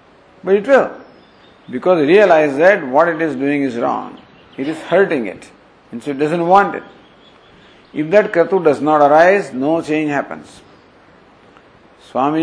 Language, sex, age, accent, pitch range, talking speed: English, male, 50-69, Indian, 175-235 Hz, 155 wpm